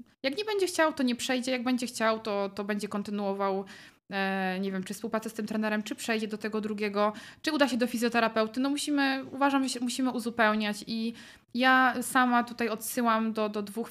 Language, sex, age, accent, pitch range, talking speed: Polish, female, 20-39, native, 210-245 Hz, 190 wpm